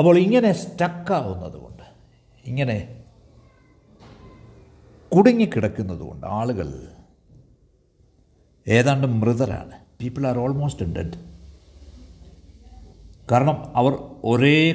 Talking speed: 60 wpm